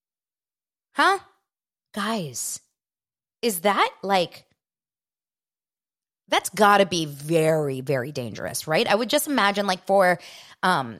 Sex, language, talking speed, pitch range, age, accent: female, English, 110 wpm, 170-250 Hz, 20-39, American